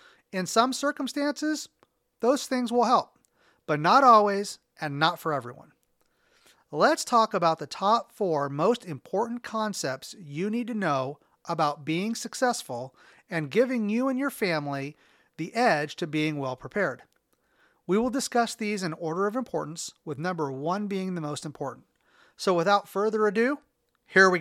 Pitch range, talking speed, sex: 155-230 Hz, 150 wpm, male